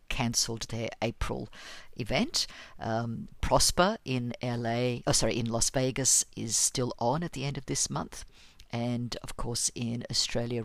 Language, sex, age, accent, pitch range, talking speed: English, female, 50-69, Australian, 115-150 Hz, 150 wpm